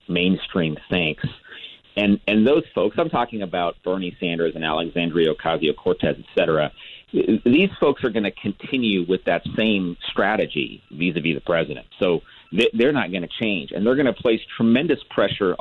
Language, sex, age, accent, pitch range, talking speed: English, male, 40-59, American, 90-105 Hz, 160 wpm